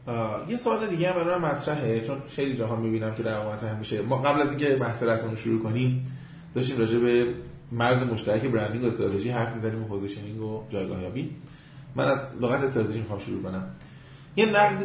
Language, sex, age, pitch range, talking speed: Persian, male, 30-49, 115-145 Hz, 195 wpm